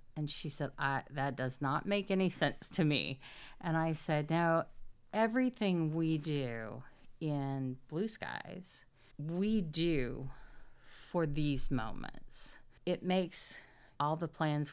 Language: English